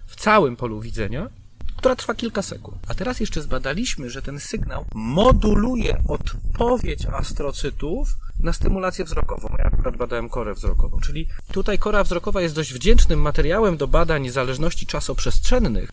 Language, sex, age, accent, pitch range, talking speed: Polish, male, 40-59, native, 140-200 Hz, 145 wpm